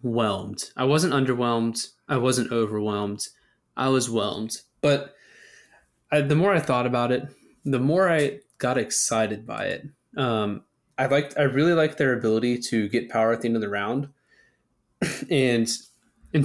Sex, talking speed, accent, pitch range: male, 160 wpm, American, 115-135 Hz